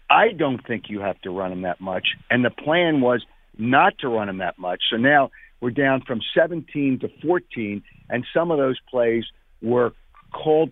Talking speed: 195 wpm